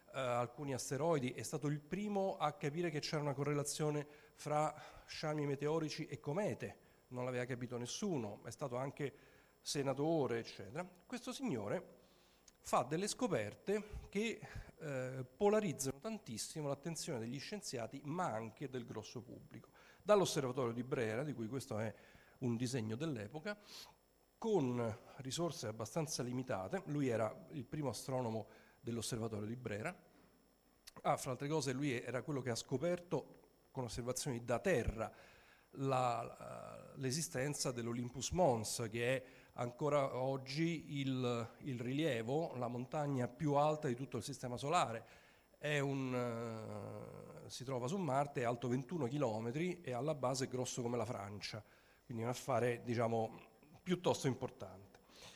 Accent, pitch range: native, 120-150 Hz